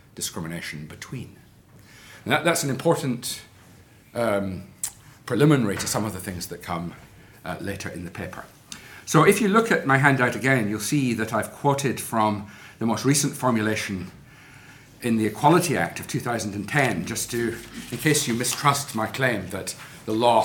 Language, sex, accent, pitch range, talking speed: English, male, British, 105-135 Hz, 160 wpm